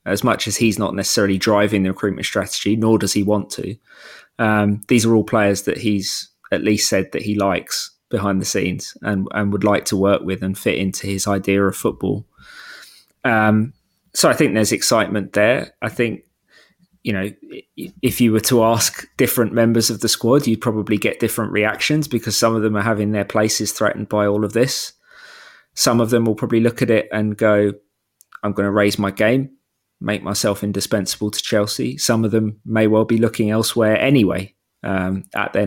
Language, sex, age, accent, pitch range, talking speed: English, male, 20-39, British, 100-120 Hz, 195 wpm